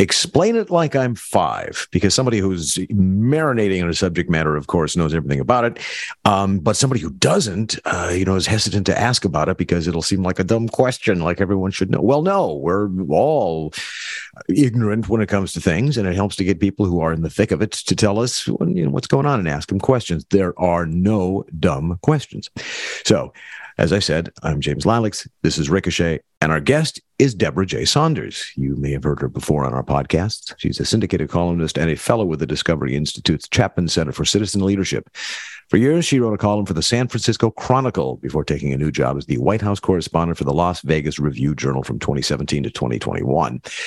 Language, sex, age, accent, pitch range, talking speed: English, male, 50-69, American, 80-110 Hz, 210 wpm